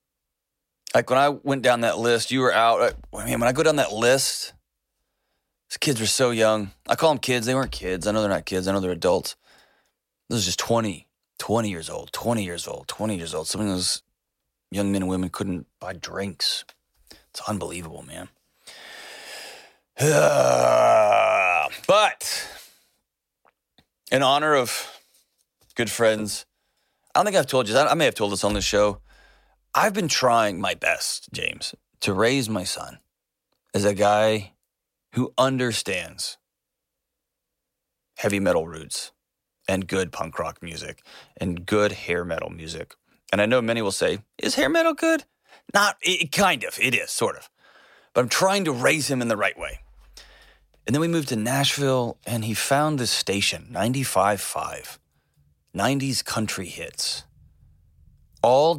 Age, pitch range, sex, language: 30-49, 90-125 Hz, male, English